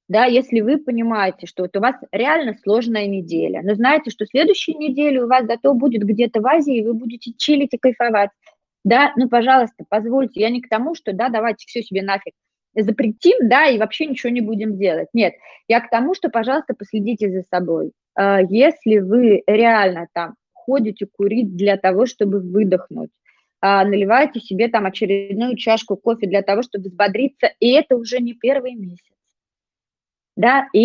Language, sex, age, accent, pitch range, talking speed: Russian, female, 20-39, native, 200-250 Hz, 175 wpm